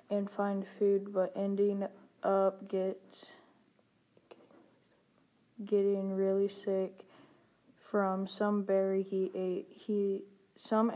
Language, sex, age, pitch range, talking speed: English, female, 10-29, 195-205 Hz, 95 wpm